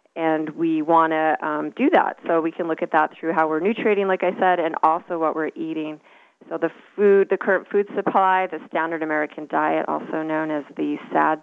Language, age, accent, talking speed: English, 30-49, American, 210 wpm